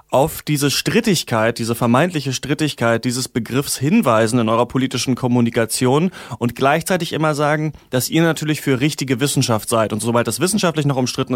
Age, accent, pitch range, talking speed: 30-49, German, 125-150 Hz, 160 wpm